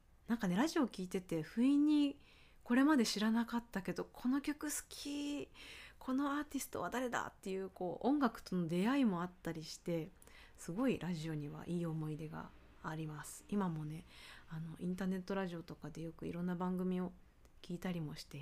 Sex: female